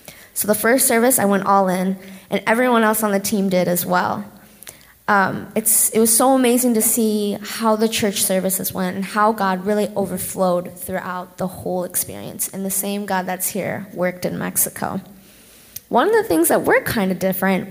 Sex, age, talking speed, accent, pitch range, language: female, 20-39, 195 wpm, American, 195-265 Hz, English